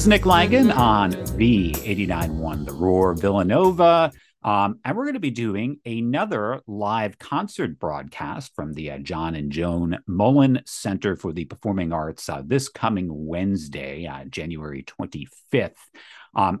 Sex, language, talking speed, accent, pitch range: male, English, 150 wpm, American, 95-135 Hz